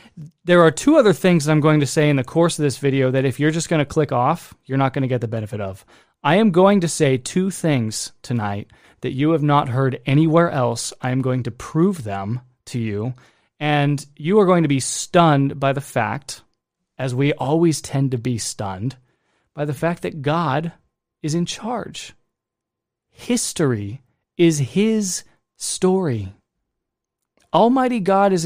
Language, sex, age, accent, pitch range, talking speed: English, male, 20-39, American, 125-160 Hz, 180 wpm